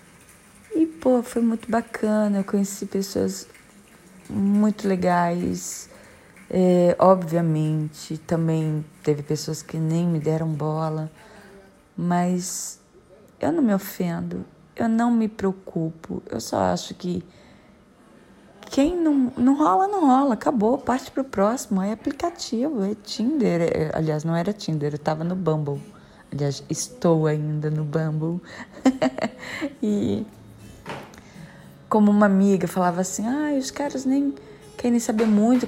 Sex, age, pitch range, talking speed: female, 20-39, 175-245 Hz, 125 wpm